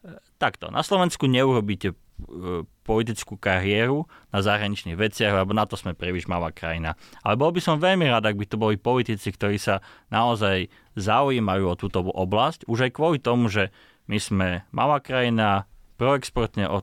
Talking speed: 160 wpm